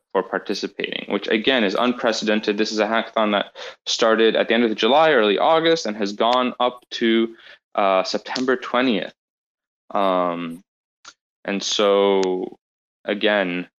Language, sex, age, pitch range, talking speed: English, male, 20-39, 95-115 Hz, 140 wpm